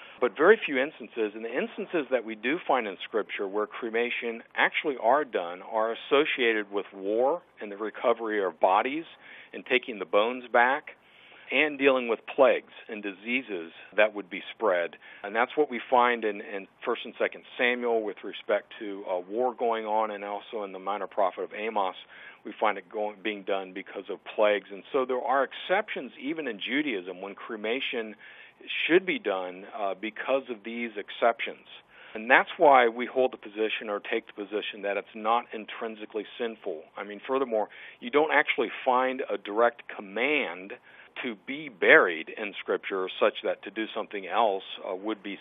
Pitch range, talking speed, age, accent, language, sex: 105-130 Hz, 180 wpm, 50-69, American, English, male